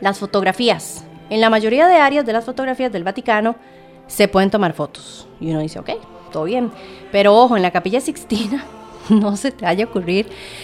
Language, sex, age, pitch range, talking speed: English, female, 30-49, 185-245 Hz, 190 wpm